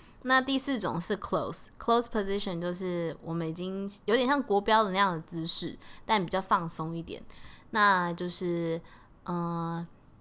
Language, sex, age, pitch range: Chinese, female, 20-39, 170-210 Hz